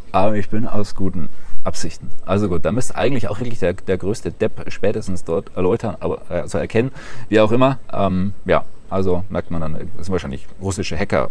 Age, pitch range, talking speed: 30-49, 95-110 Hz, 200 wpm